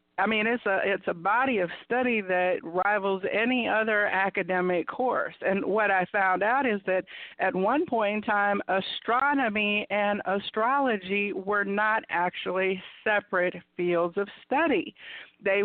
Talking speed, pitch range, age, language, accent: 145 wpm, 185-235 Hz, 50-69, English, American